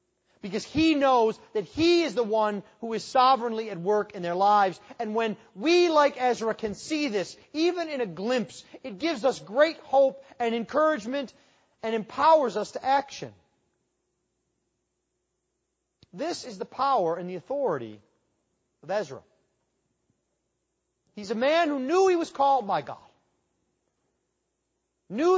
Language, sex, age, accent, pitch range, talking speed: English, male, 30-49, American, 210-290 Hz, 140 wpm